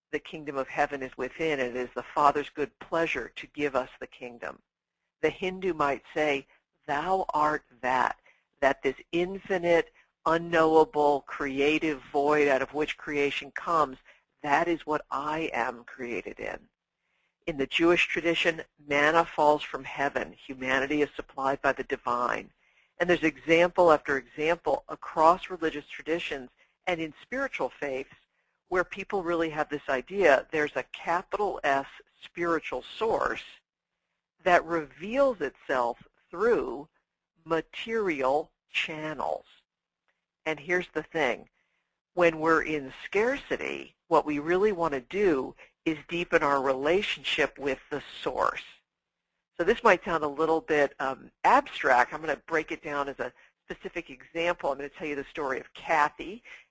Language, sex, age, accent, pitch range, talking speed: English, female, 50-69, American, 140-170 Hz, 145 wpm